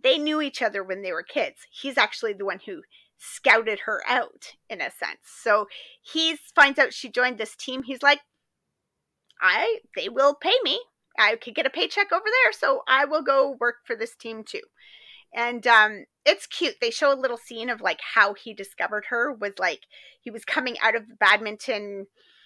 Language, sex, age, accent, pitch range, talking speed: English, female, 30-49, American, 215-285 Hz, 200 wpm